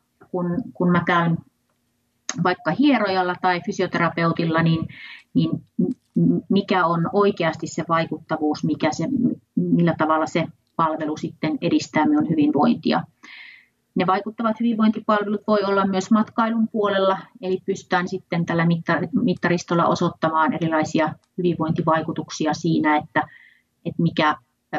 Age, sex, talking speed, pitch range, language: 30-49, female, 105 wpm, 165-200 Hz, Finnish